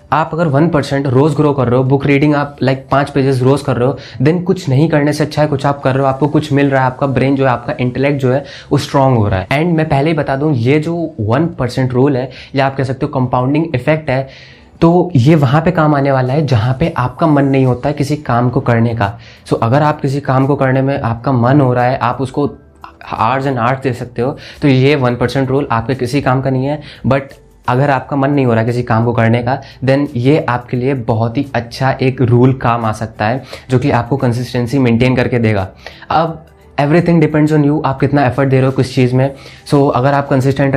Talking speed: 255 wpm